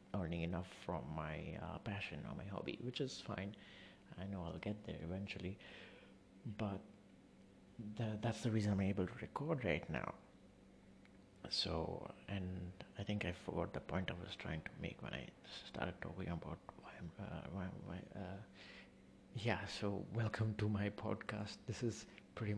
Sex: male